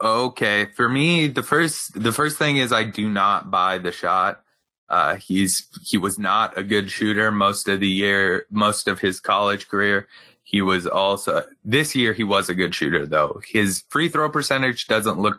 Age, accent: 20-39, American